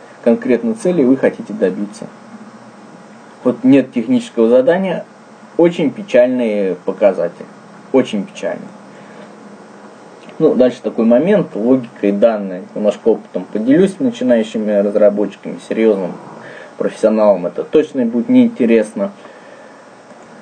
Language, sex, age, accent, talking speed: Russian, male, 20-39, native, 95 wpm